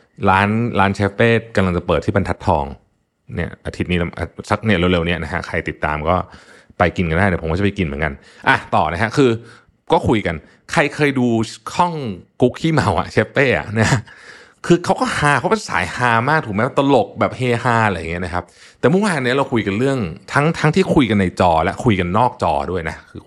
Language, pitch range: Thai, 90-125 Hz